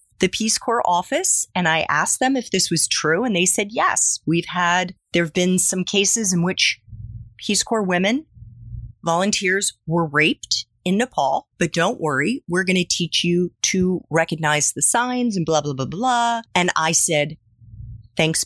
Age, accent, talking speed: 30-49, American, 170 wpm